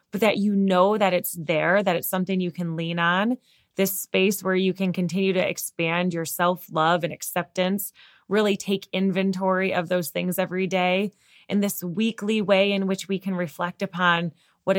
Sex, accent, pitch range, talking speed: female, American, 175-195 Hz, 185 wpm